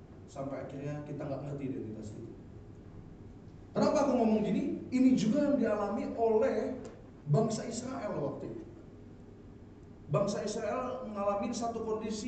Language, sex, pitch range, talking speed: Indonesian, male, 170-255 Hz, 120 wpm